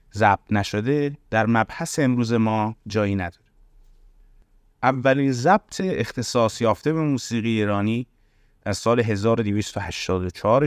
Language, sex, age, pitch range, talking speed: Persian, male, 30-49, 105-130 Hz, 100 wpm